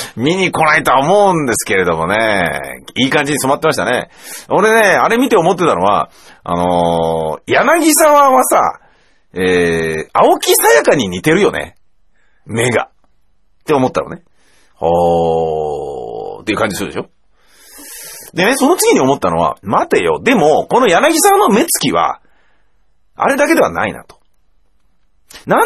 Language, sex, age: Japanese, male, 40-59